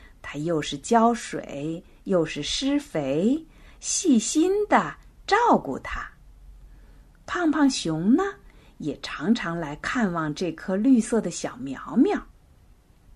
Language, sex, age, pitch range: Chinese, female, 50-69, 155-230 Hz